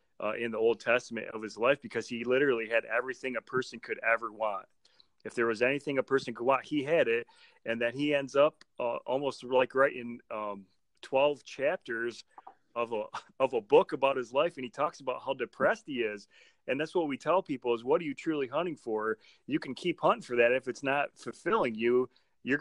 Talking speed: 220 wpm